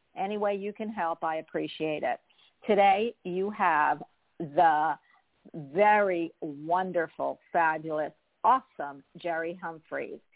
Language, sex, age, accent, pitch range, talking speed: English, female, 50-69, American, 170-215 Hz, 105 wpm